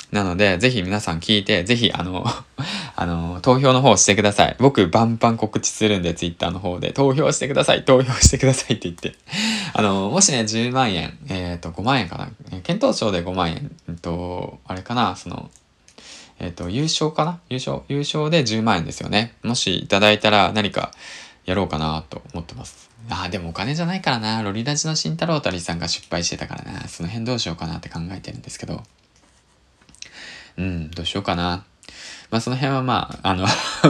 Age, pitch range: 20-39, 90-125 Hz